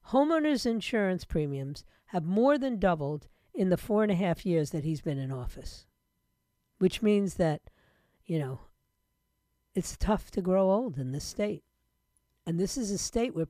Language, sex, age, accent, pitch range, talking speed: English, female, 50-69, American, 165-235 Hz, 170 wpm